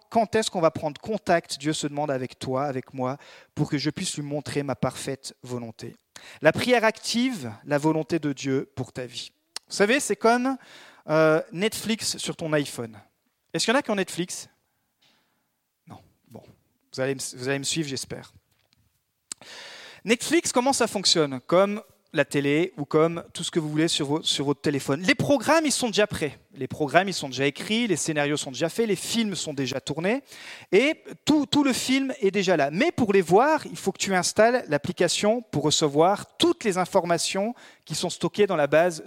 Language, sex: French, male